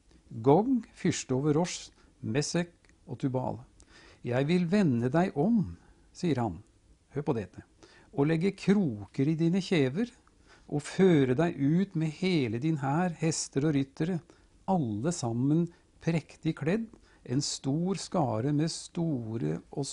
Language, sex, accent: English, male, Norwegian